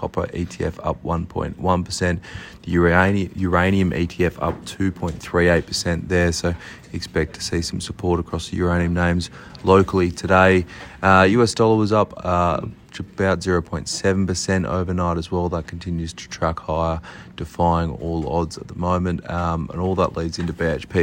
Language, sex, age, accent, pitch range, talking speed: English, male, 30-49, Australian, 80-90 Hz, 145 wpm